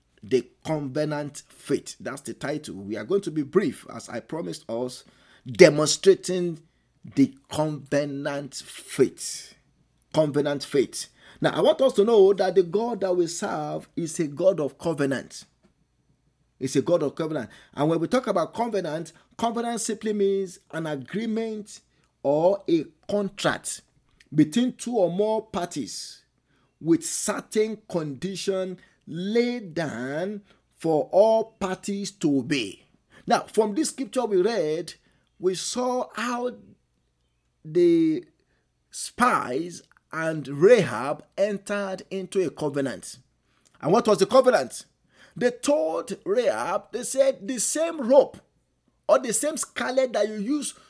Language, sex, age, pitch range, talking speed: English, male, 50-69, 160-240 Hz, 130 wpm